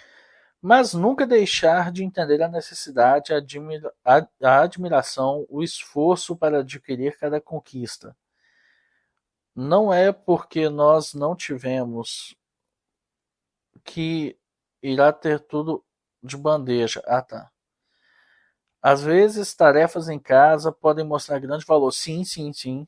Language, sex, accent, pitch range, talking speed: Portuguese, male, Brazilian, 130-170 Hz, 110 wpm